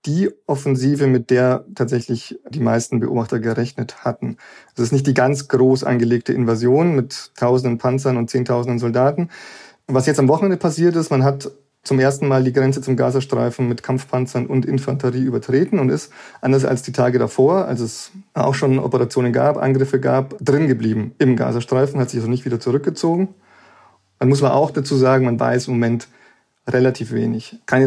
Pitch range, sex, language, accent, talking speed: 120-135 Hz, male, German, German, 175 wpm